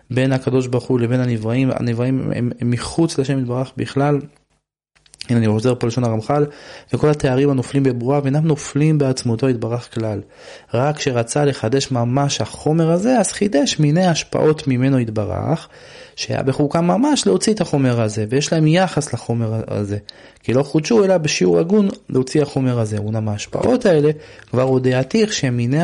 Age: 20-39